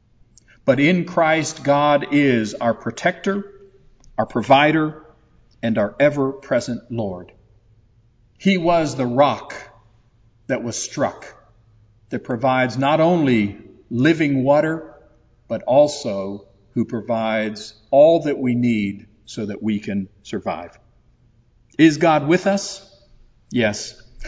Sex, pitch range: male, 110-140 Hz